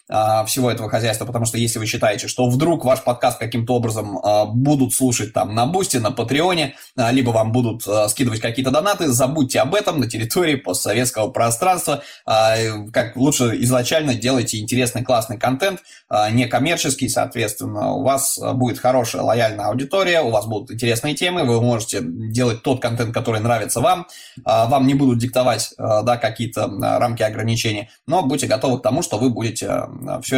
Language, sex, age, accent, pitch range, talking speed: Russian, male, 20-39, native, 115-135 Hz, 155 wpm